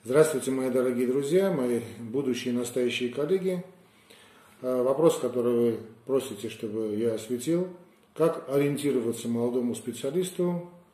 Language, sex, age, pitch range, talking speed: Russian, male, 40-59, 115-150 Hz, 110 wpm